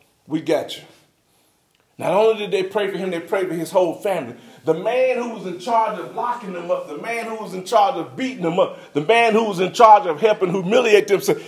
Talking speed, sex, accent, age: 245 wpm, male, American, 40-59